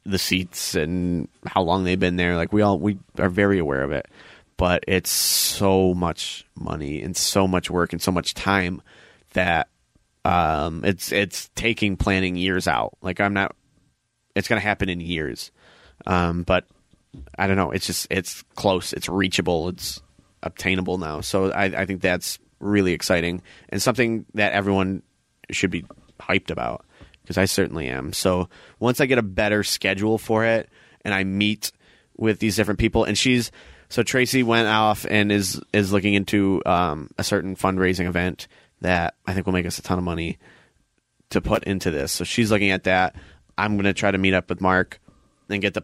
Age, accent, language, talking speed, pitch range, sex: 30-49, American, English, 185 wpm, 90-100 Hz, male